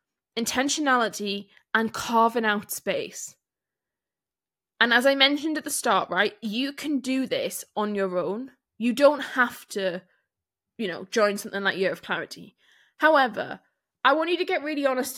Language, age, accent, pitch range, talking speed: English, 10-29, British, 210-270 Hz, 160 wpm